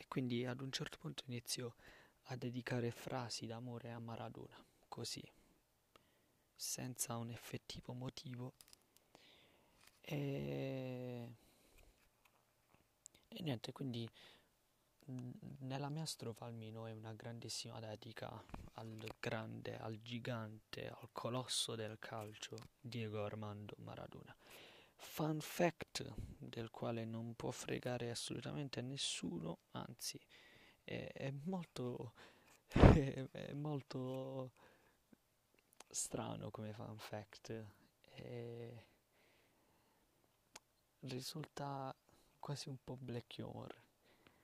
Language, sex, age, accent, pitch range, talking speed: Italian, male, 20-39, native, 110-135 Hz, 90 wpm